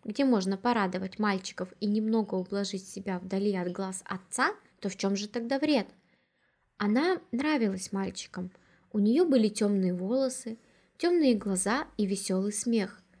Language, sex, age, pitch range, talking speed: Russian, female, 20-39, 195-255 Hz, 140 wpm